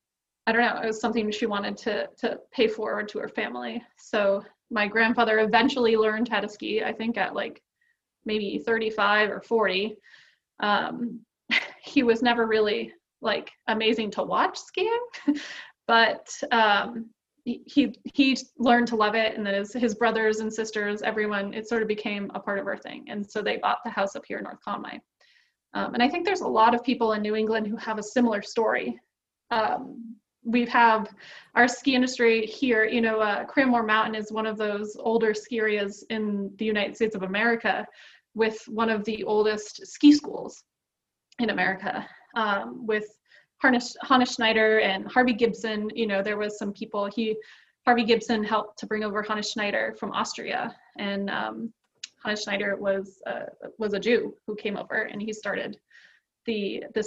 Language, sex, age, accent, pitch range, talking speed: English, female, 20-39, American, 210-235 Hz, 175 wpm